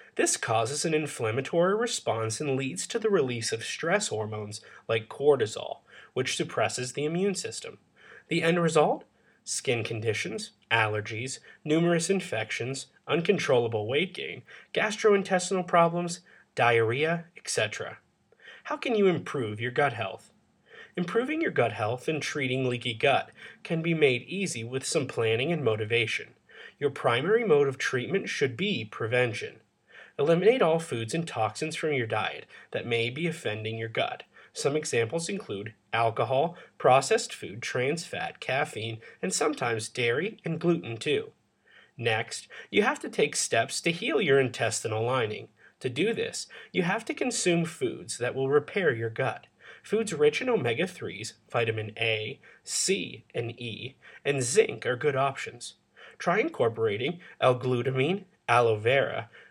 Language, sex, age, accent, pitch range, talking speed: English, male, 30-49, American, 115-185 Hz, 140 wpm